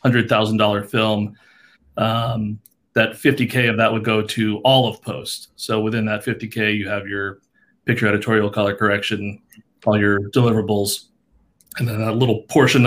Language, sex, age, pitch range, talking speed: English, male, 30-49, 105-125 Hz, 170 wpm